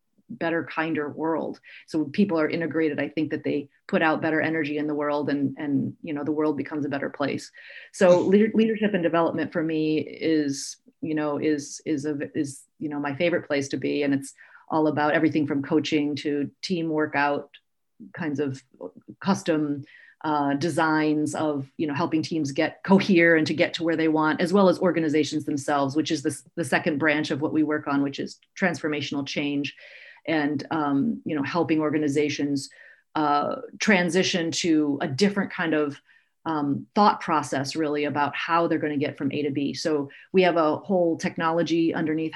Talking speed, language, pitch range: 185 wpm, English, 150-175 Hz